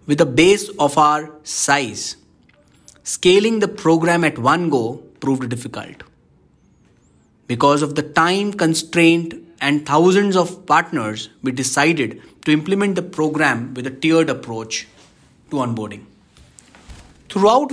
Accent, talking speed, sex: Indian, 120 wpm, male